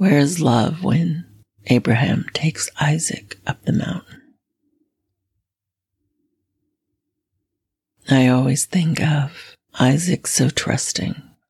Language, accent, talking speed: English, American, 90 wpm